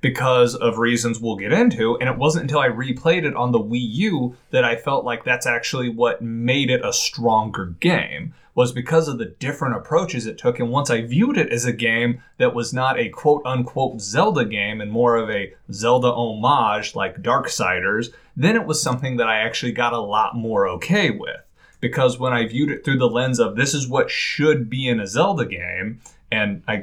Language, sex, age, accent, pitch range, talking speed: English, male, 20-39, American, 115-145 Hz, 210 wpm